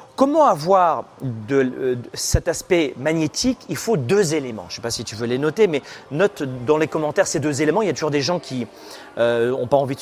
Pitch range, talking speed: 130-185 Hz, 230 wpm